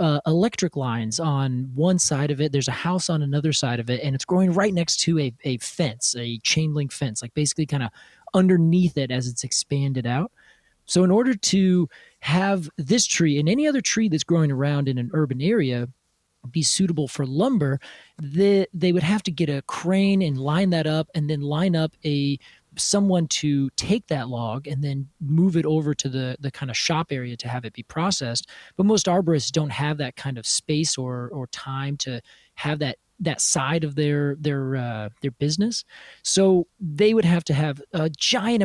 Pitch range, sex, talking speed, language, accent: 140-180 Hz, male, 205 wpm, English, American